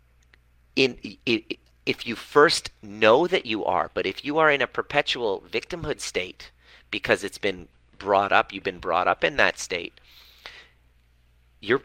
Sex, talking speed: male, 145 wpm